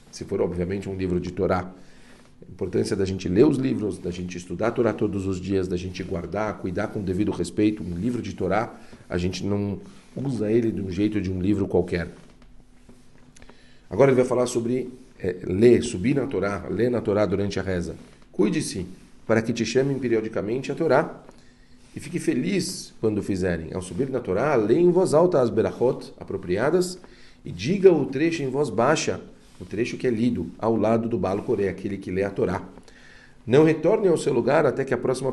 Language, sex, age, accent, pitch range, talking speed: Portuguese, male, 40-59, Brazilian, 95-125 Hz, 195 wpm